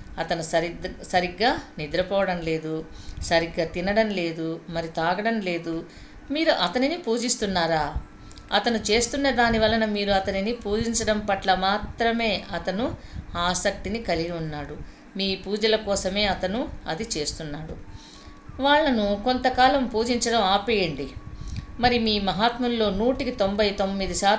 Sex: female